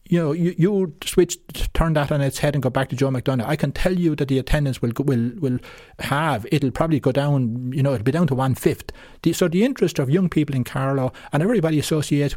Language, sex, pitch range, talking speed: English, male, 125-155 Hz, 245 wpm